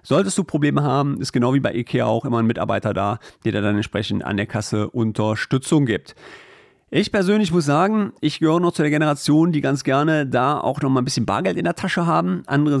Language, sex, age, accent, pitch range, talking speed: German, male, 40-59, German, 115-160 Hz, 215 wpm